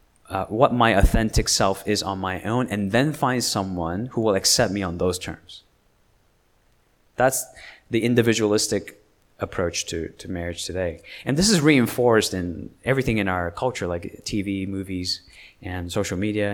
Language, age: English, 30-49